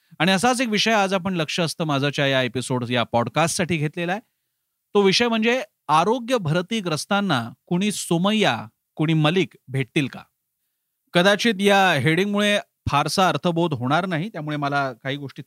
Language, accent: Marathi, native